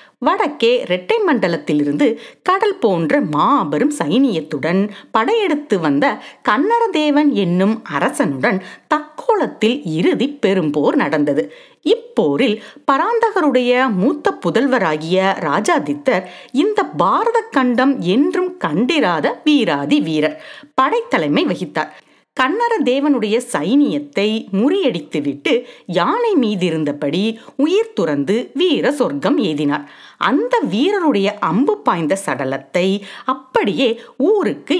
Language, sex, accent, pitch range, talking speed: Tamil, female, native, 190-310 Hz, 85 wpm